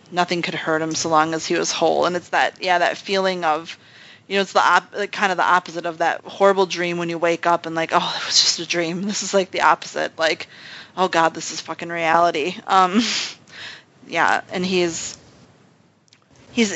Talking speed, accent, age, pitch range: 210 wpm, American, 30-49, 165-185 Hz